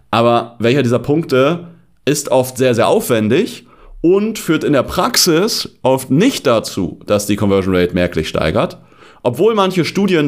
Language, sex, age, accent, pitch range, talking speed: German, male, 40-59, German, 100-140 Hz, 150 wpm